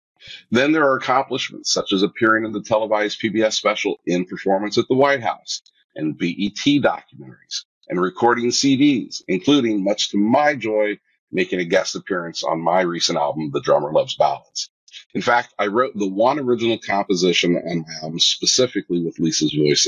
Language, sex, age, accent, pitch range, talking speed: English, male, 50-69, American, 90-115 Hz, 170 wpm